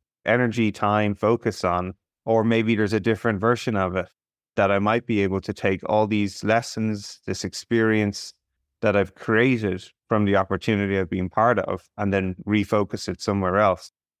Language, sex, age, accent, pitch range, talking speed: English, male, 30-49, Irish, 100-115 Hz, 170 wpm